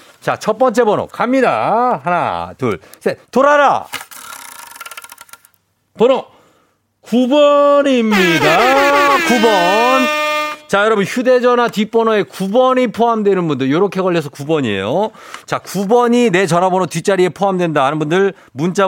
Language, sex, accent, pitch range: Korean, male, native, 140-215 Hz